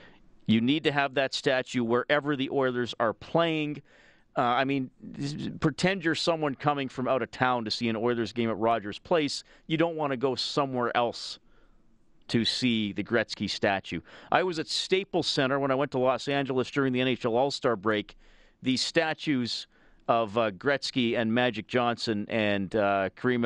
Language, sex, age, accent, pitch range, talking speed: English, male, 40-59, American, 115-150 Hz, 175 wpm